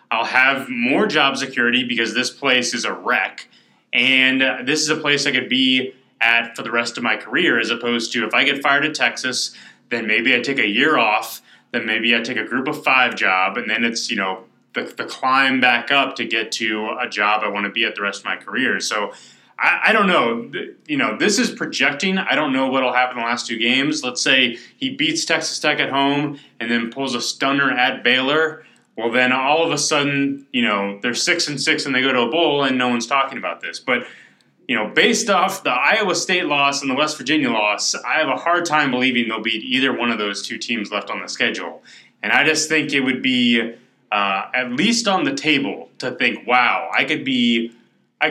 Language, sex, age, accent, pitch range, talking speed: English, male, 20-39, American, 120-140 Hz, 235 wpm